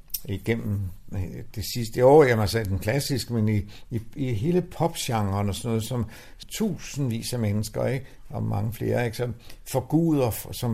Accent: native